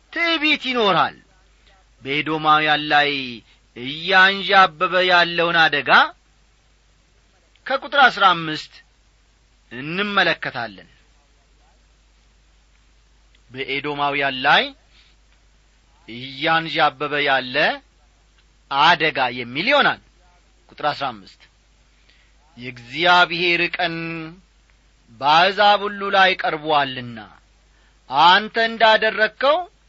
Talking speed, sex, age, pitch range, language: 60 wpm, male, 40-59, 145-220 Hz, Amharic